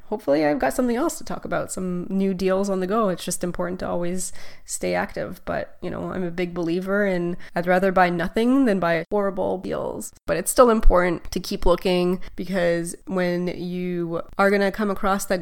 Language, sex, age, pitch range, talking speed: English, female, 20-39, 180-215 Hz, 200 wpm